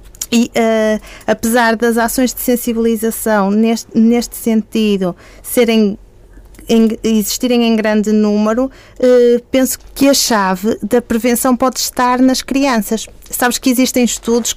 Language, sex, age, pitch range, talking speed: Portuguese, female, 30-49, 225-260 Hz, 130 wpm